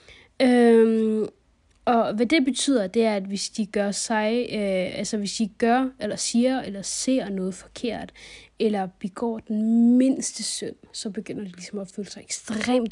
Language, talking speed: Danish, 165 wpm